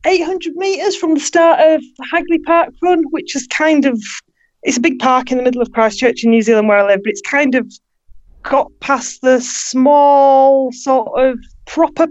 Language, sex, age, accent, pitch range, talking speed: English, female, 30-49, British, 225-290 Hz, 195 wpm